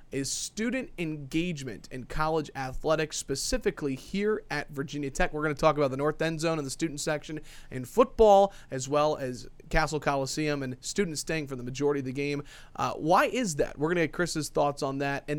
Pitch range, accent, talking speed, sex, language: 135-165 Hz, American, 205 wpm, male, English